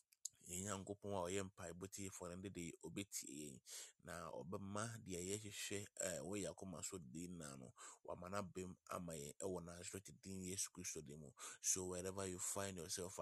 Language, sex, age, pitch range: English, male, 30-49, 90-105 Hz